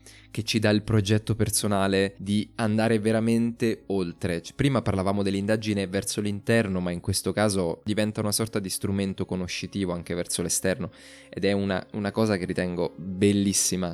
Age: 20-39